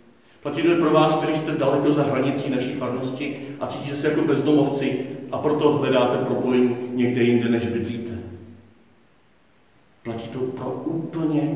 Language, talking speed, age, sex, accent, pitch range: Czech, 145 wpm, 40-59, male, native, 120-150 Hz